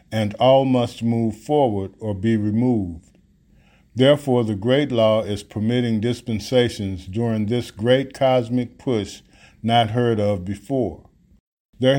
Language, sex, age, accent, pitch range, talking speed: English, male, 50-69, American, 105-125 Hz, 125 wpm